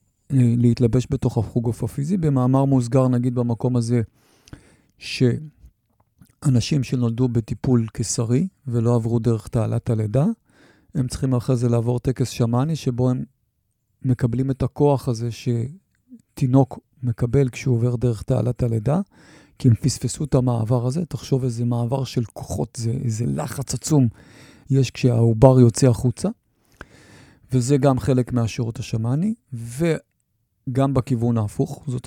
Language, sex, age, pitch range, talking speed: English, male, 40-59, 115-130 Hz, 125 wpm